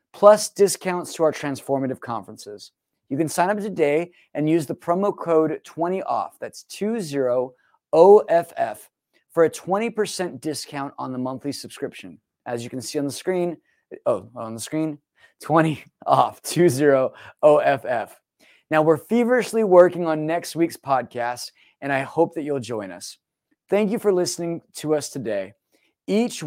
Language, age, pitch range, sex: English, 20-39, 140-180 Hz, male